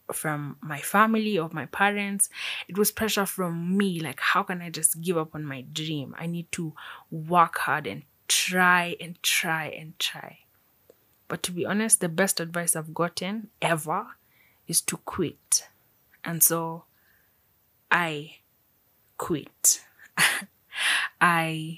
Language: English